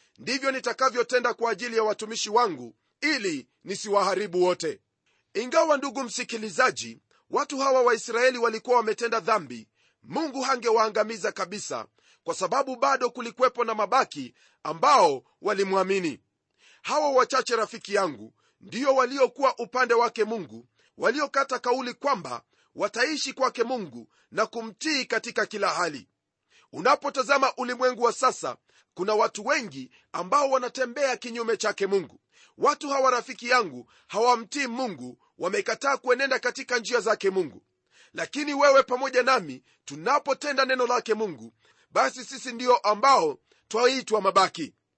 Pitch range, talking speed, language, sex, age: 220-270 Hz, 120 wpm, Swahili, male, 40-59